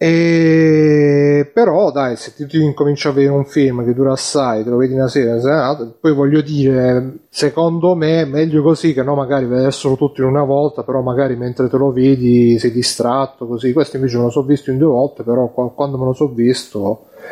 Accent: native